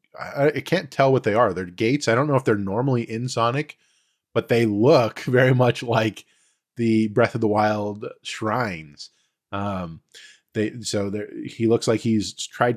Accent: American